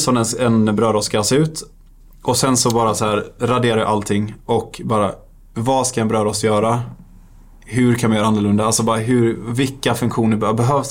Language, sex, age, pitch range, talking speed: Swedish, male, 20-39, 105-115 Hz, 175 wpm